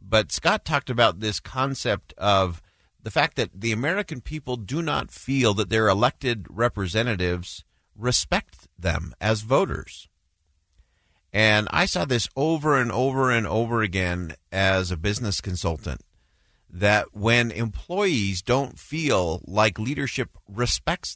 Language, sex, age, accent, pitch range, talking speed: English, male, 50-69, American, 90-120 Hz, 130 wpm